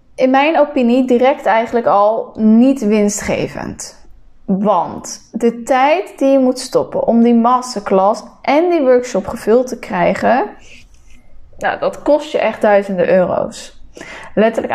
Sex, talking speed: female, 130 wpm